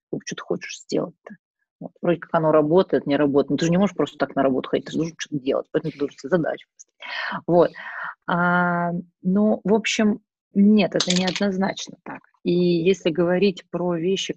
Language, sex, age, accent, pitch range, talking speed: Russian, female, 20-39, native, 155-180 Hz, 170 wpm